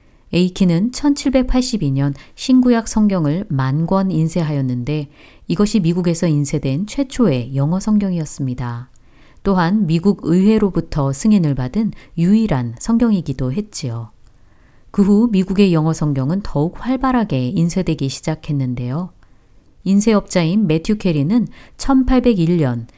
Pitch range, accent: 140-210 Hz, native